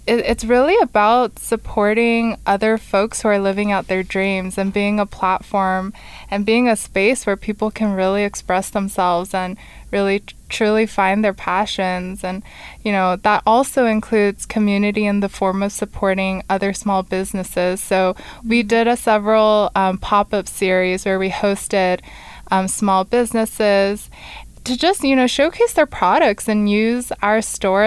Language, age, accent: English, 20-39, American